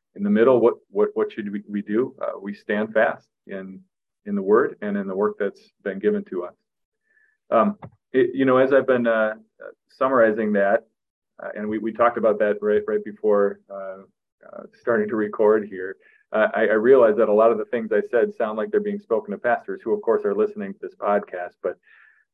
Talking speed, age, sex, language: 220 wpm, 30-49, male, English